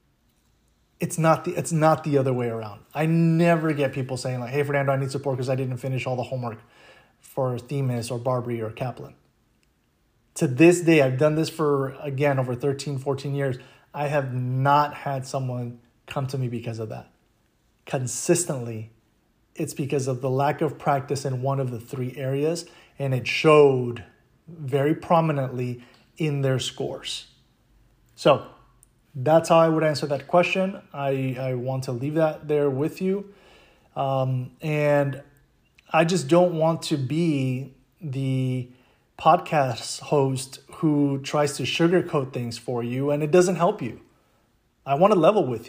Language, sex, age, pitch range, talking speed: English, male, 30-49, 130-155 Hz, 160 wpm